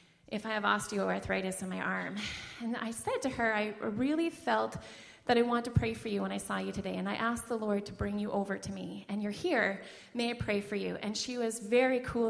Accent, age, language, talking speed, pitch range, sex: American, 30-49, English, 250 wpm, 215-285 Hz, female